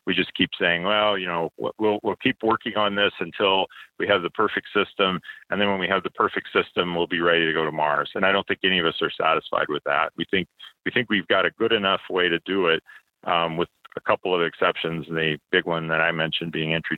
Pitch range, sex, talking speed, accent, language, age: 80-95 Hz, male, 265 wpm, American, English, 40-59